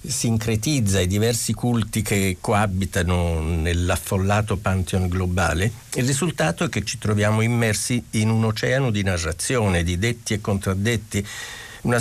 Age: 50-69